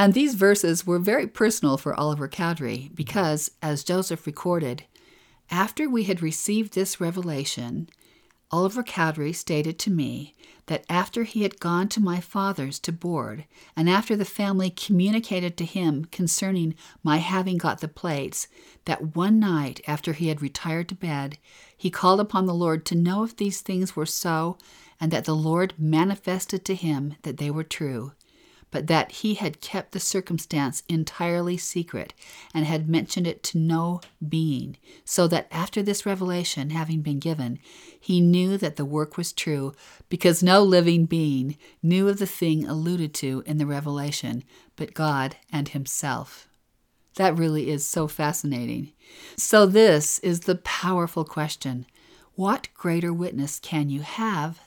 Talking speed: 160 wpm